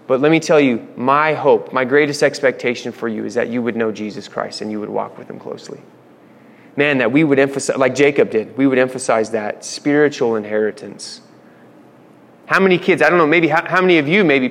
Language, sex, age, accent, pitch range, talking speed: English, male, 30-49, American, 125-165 Hz, 220 wpm